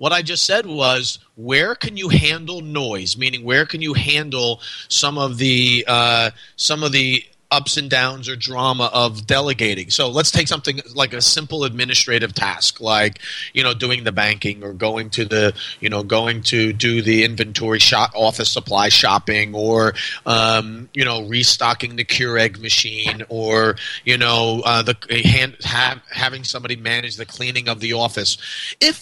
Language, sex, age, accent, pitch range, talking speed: English, male, 30-49, American, 115-150 Hz, 180 wpm